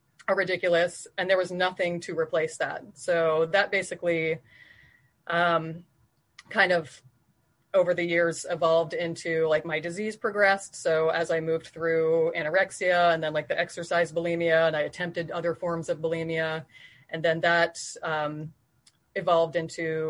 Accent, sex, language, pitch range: American, female, English, 160-180 Hz